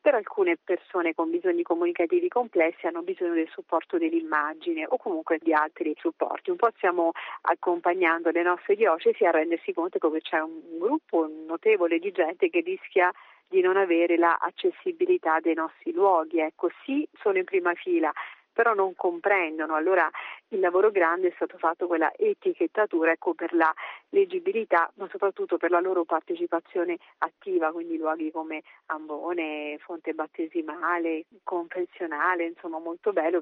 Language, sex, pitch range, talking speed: Italian, female, 165-200 Hz, 145 wpm